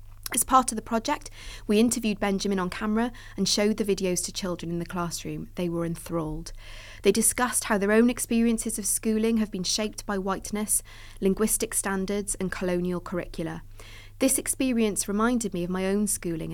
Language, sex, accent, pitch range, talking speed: English, female, British, 165-210 Hz, 175 wpm